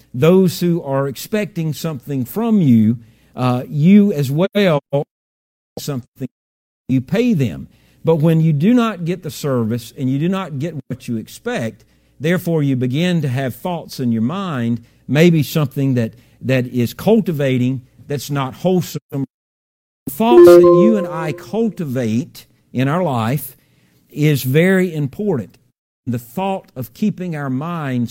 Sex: male